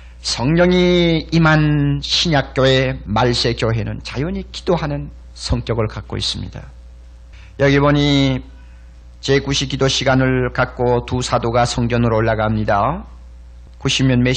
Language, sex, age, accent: Korean, male, 40-59, native